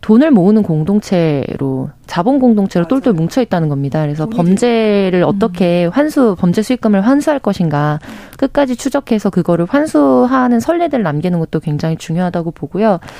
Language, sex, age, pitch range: Korean, female, 20-39, 170-245 Hz